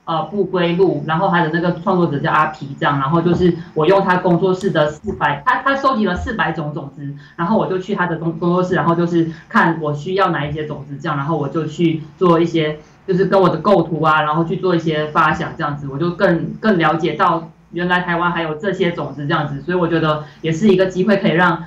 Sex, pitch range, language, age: female, 160-195 Hz, Chinese, 20-39